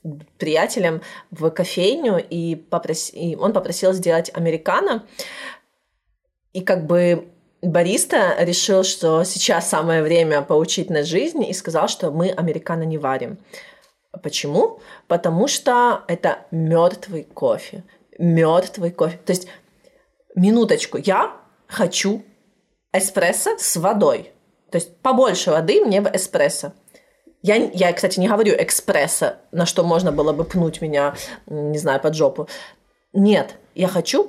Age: 30-49